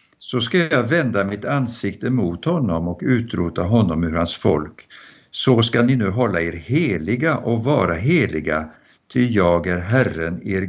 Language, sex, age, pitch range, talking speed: Swedish, male, 60-79, 95-125 Hz, 165 wpm